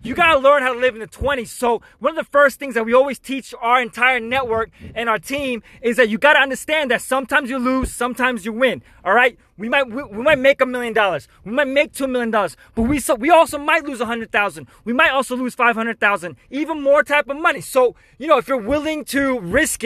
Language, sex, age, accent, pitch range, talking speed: English, male, 20-39, American, 230-275 Hz, 245 wpm